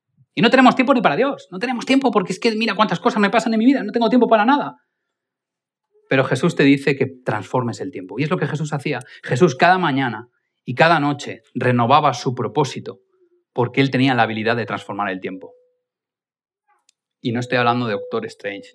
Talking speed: 210 wpm